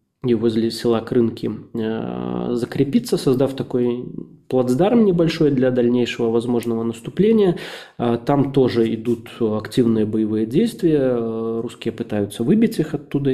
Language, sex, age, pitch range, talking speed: Russian, male, 20-39, 115-140 Hz, 110 wpm